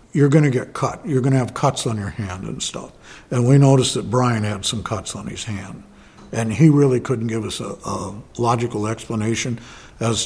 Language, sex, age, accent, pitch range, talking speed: English, male, 60-79, American, 105-130 Hz, 215 wpm